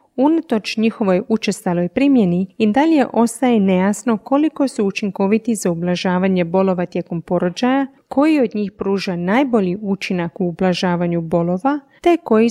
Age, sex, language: 30-49, female, Croatian